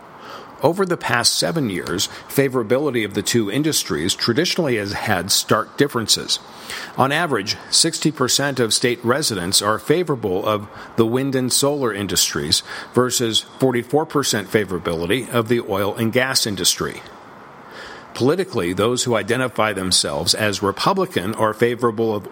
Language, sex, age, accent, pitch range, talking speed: English, male, 50-69, American, 110-130 Hz, 130 wpm